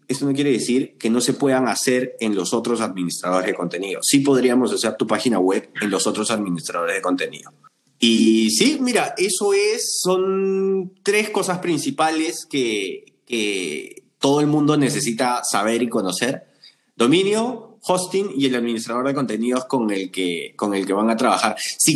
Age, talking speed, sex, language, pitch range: 30-49, 170 wpm, male, Spanish, 115-170 Hz